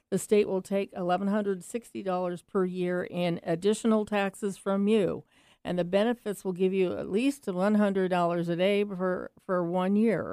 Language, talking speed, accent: English, 155 wpm, American